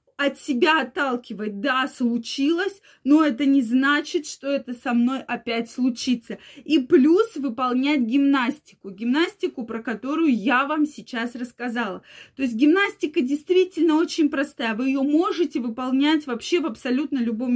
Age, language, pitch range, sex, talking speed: 20-39, Russian, 240-295 Hz, female, 135 wpm